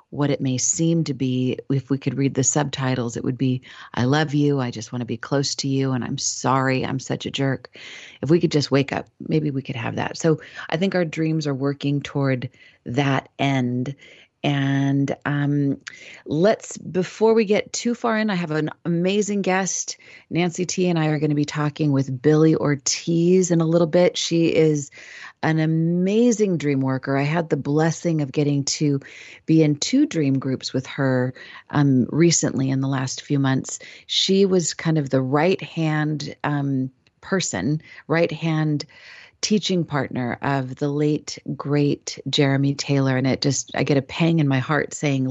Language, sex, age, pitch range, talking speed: English, female, 40-59, 135-160 Hz, 185 wpm